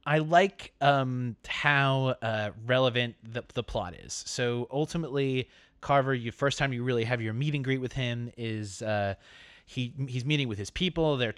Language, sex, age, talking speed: English, male, 30-49, 175 wpm